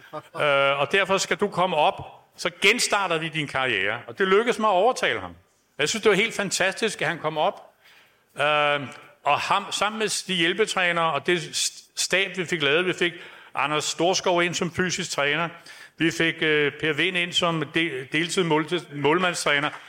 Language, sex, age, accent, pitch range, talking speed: Danish, male, 60-79, native, 160-200 Hz, 170 wpm